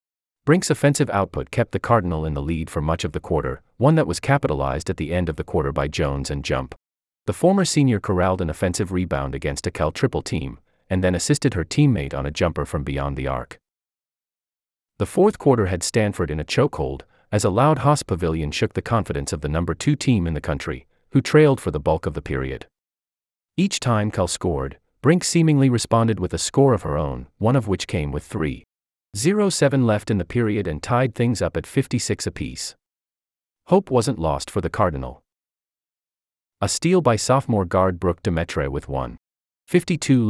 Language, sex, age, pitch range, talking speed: English, male, 30-49, 75-125 Hz, 195 wpm